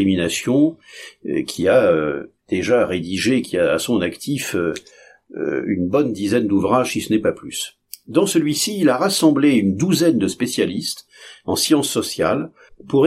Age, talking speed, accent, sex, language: 50-69, 140 wpm, French, male, French